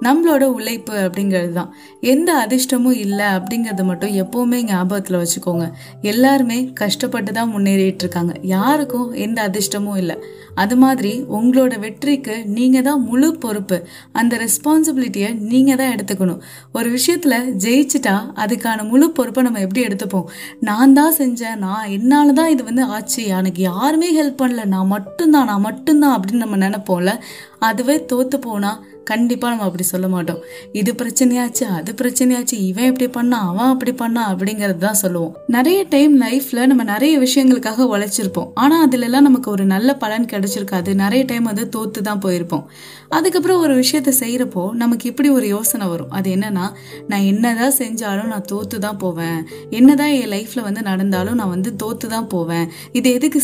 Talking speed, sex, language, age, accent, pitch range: 125 wpm, female, Tamil, 20-39, native, 195-255 Hz